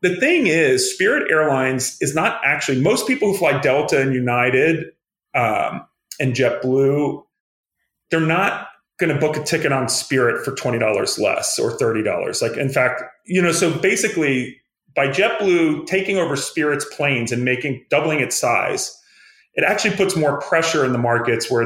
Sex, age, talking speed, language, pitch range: male, 30-49, 165 wpm, English, 130-175 Hz